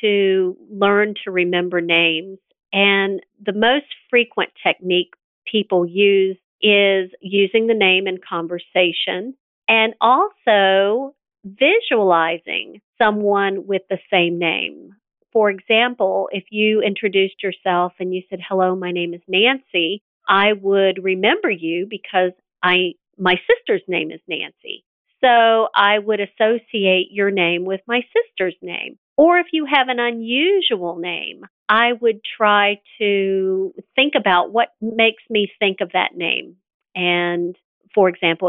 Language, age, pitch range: English, 50-69, 180-220 Hz